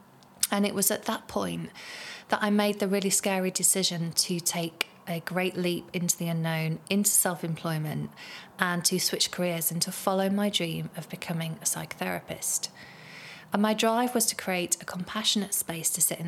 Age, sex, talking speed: 30-49, female, 175 wpm